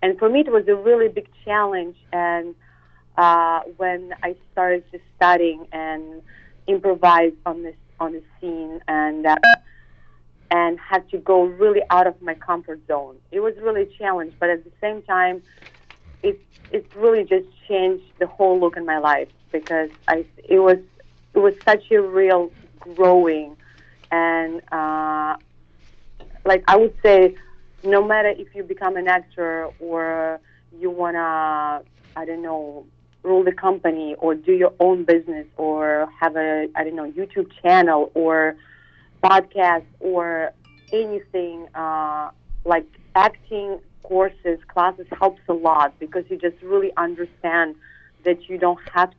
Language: English